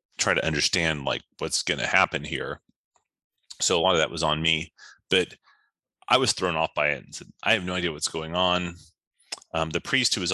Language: English